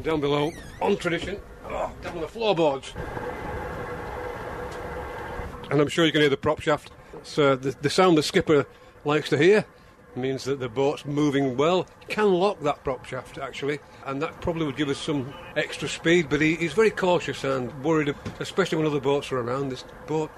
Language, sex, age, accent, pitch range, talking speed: English, male, 40-59, British, 135-170 Hz, 185 wpm